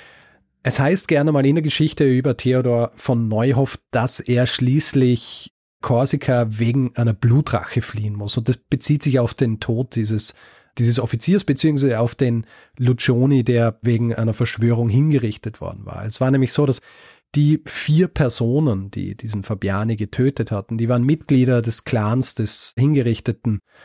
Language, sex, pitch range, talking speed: German, male, 115-140 Hz, 155 wpm